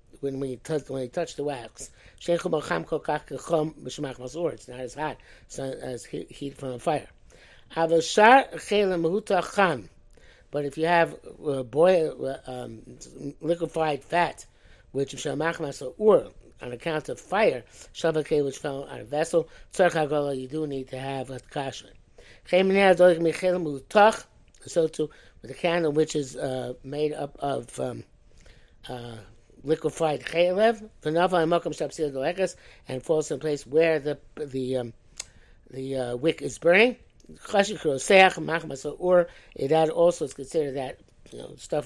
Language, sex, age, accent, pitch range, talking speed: English, male, 60-79, American, 135-170 Hz, 110 wpm